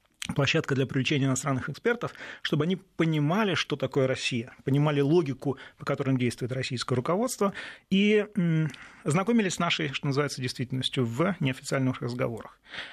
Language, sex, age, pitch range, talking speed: Russian, male, 30-49, 135-180 Hz, 130 wpm